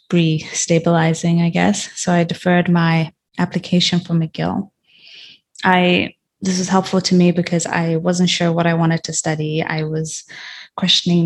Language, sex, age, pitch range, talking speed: English, female, 20-39, 165-180 Hz, 150 wpm